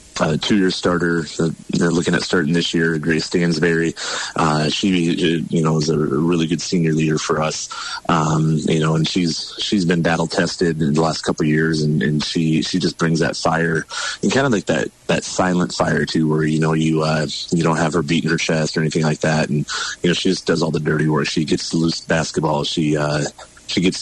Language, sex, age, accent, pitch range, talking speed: English, male, 30-49, American, 75-85 Hz, 220 wpm